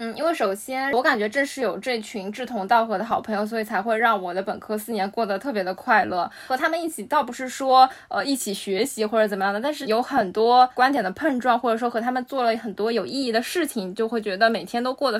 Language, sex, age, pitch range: Chinese, female, 10-29, 210-250 Hz